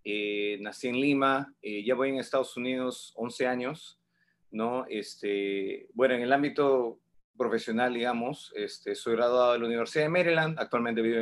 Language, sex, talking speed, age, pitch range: English, male, 160 wpm, 30-49, 120-145 Hz